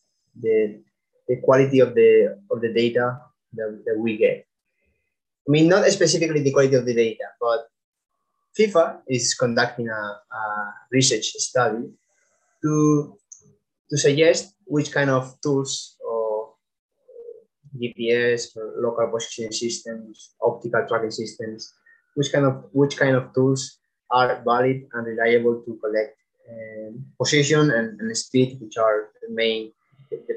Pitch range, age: 120-175 Hz, 20-39